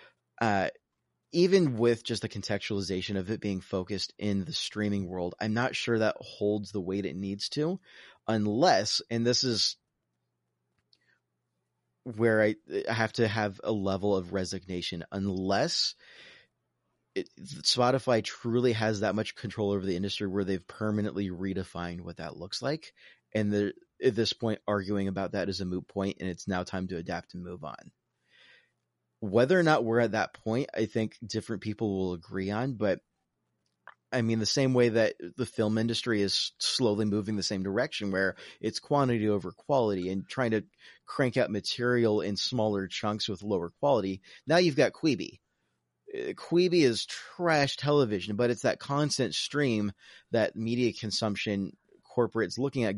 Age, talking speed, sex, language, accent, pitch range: 30-49, 160 wpm, male, English, American, 95-120 Hz